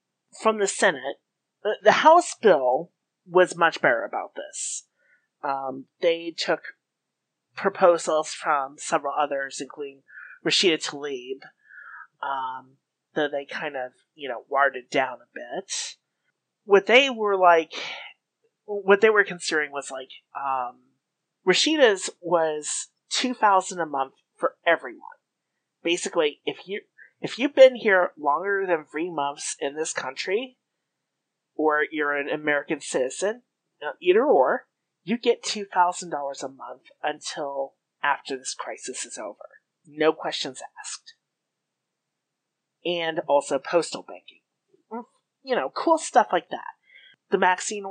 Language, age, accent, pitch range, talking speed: English, 30-49, American, 145-215 Hz, 125 wpm